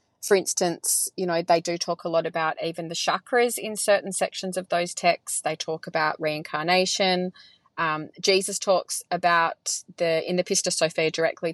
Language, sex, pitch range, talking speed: English, female, 170-200 Hz, 170 wpm